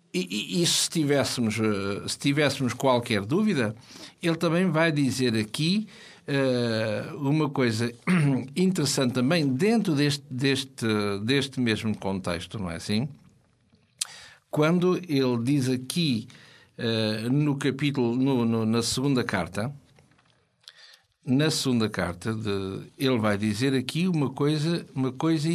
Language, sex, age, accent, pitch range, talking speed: Portuguese, male, 60-79, Portuguese, 120-170 Hz, 120 wpm